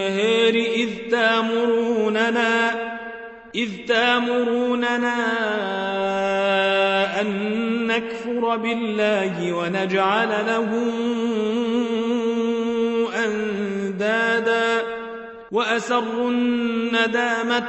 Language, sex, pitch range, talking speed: Arabic, male, 210-230 Hz, 35 wpm